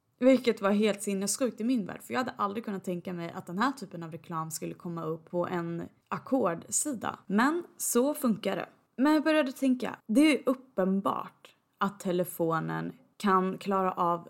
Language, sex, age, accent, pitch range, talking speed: Swedish, female, 20-39, native, 175-245 Hz, 175 wpm